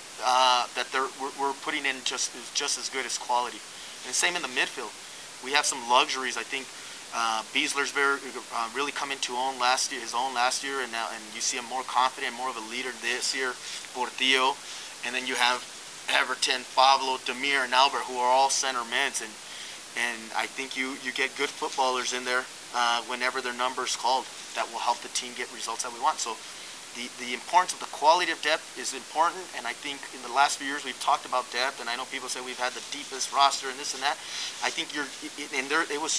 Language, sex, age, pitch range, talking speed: English, male, 20-39, 120-135 Hz, 230 wpm